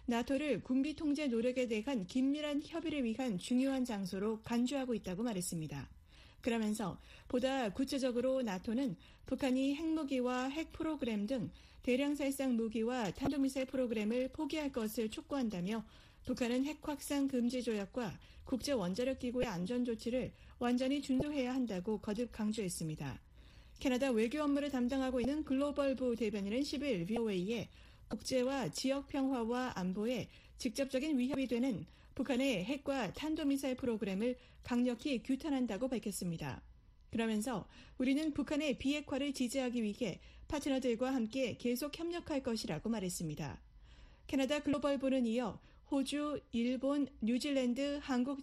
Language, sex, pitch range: Korean, female, 230-275 Hz